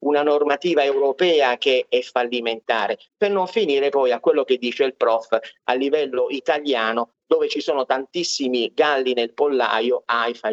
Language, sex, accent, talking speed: Italian, male, native, 155 wpm